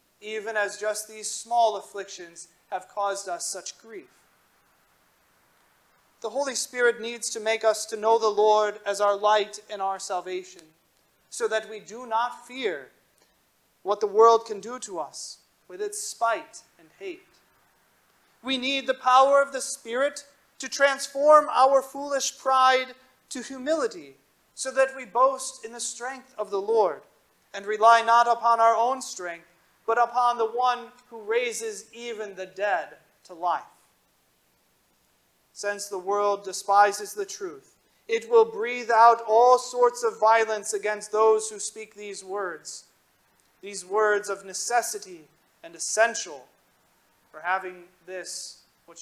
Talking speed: 145 wpm